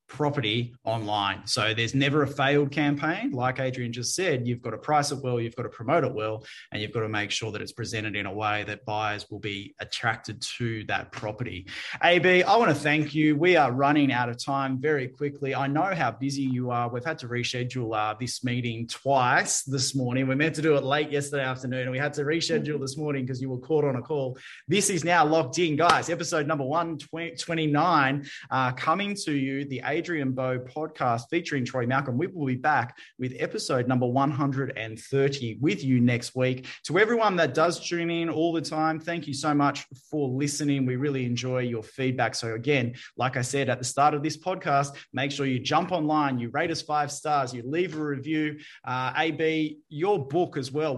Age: 20-39